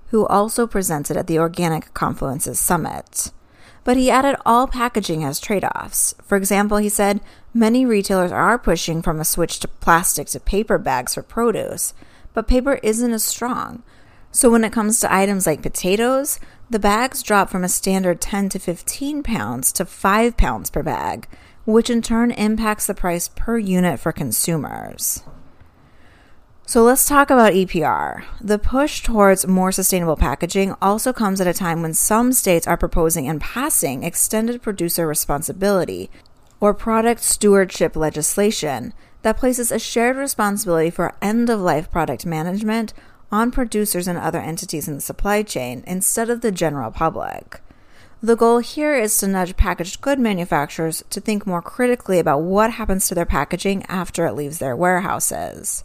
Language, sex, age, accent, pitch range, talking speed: English, female, 30-49, American, 170-230 Hz, 160 wpm